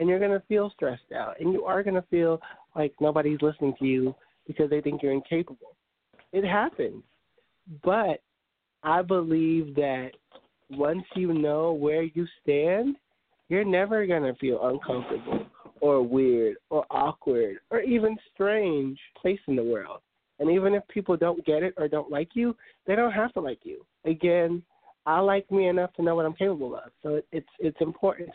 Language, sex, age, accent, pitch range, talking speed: English, male, 30-49, American, 135-185 Hz, 180 wpm